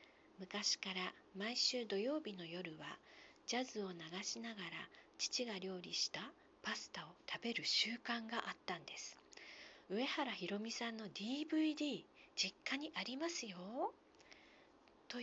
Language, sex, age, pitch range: Japanese, female, 40-59, 205-300 Hz